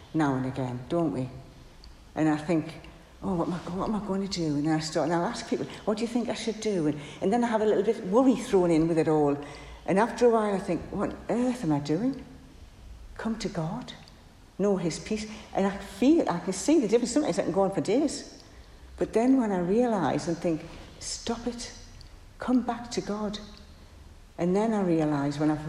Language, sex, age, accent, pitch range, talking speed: English, female, 60-79, British, 150-210 Hz, 225 wpm